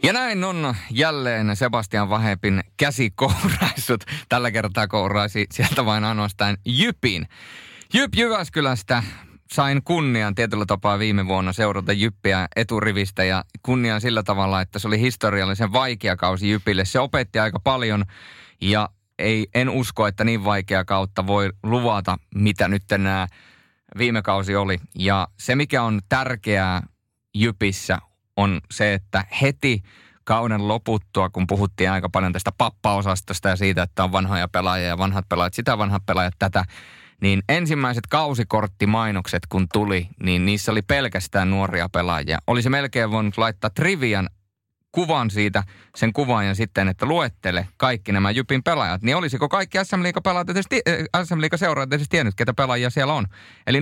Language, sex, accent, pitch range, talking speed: Finnish, male, native, 95-125 Hz, 140 wpm